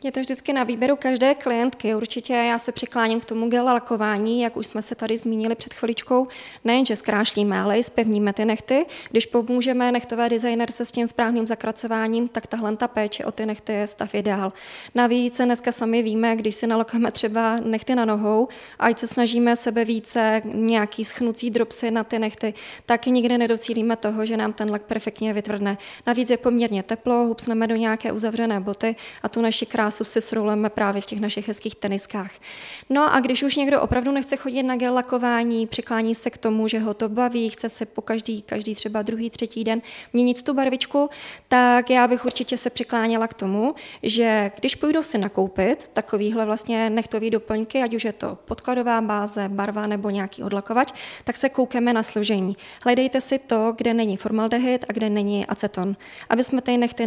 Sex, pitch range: female, 220-245 Hz